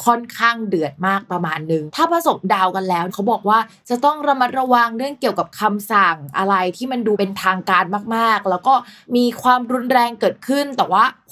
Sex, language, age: female, Thai, 20-39